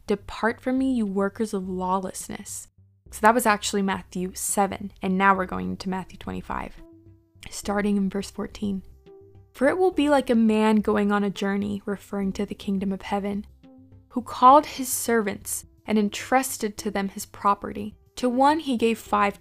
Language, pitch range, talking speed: English, 200-225 Hz, 175 wpm